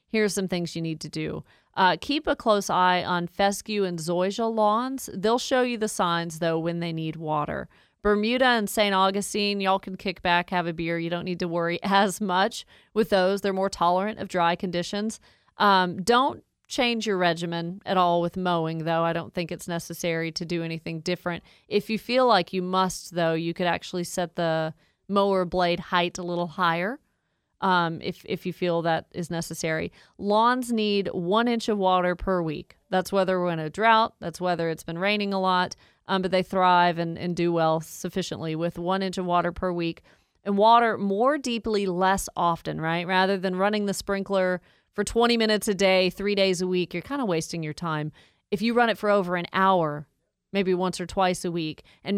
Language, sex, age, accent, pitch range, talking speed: English, female, 40-59, American, 170-200 Hz, 205 wpm